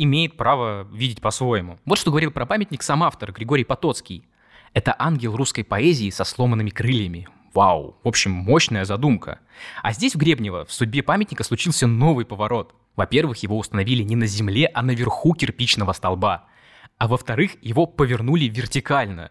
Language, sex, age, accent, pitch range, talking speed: Russian, male, 20-39, native, 110-150 Hz, 155 wpm